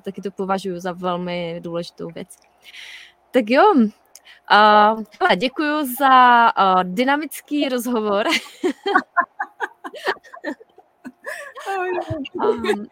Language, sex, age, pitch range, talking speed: Czech, female, 20-39, 190-260 Hz, 75 wpm